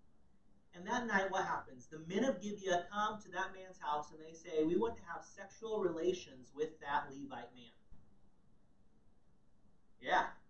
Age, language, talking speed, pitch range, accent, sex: 30-49, English, 160 wpm, 135-215 Hz, American, male